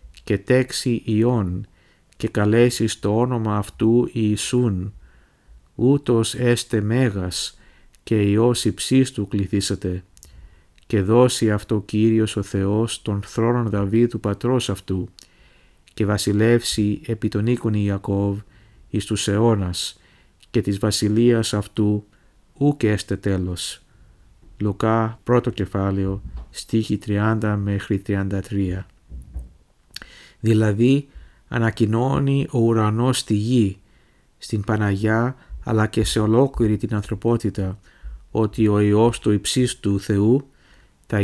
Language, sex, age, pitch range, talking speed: Greek, male, 50-69, 100-115 Hz, 105 wpm